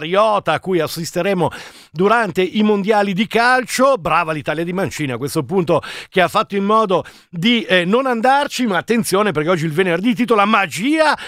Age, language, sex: 50-69, Italian, male